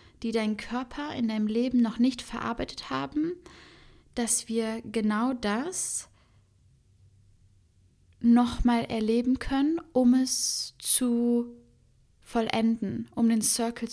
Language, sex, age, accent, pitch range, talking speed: German, female, 10-29, German, 205-240 Hz, 105 wpm